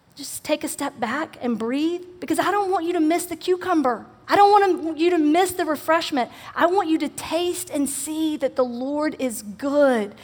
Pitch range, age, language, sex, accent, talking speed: 260-320 Hz, 40-59, English, female, American, 210 wpm